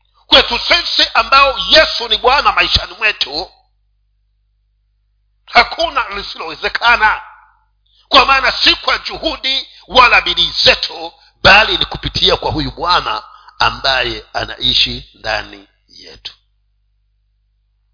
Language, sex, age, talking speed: Swahili, male, 50-69, 95 wpm